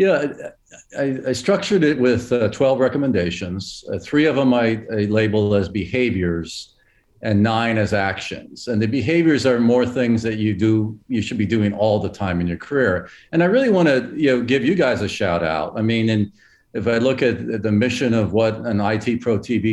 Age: 50-69